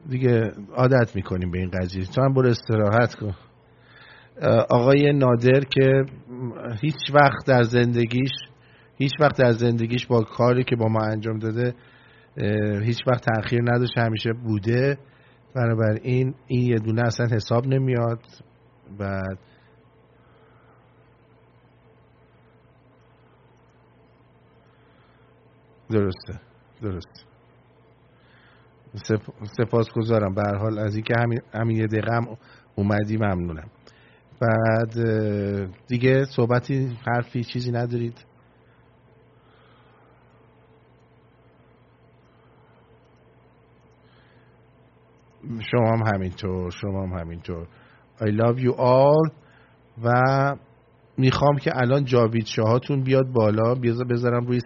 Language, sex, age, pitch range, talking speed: English, male, 50-69, 110-125 Hz, 90 wpm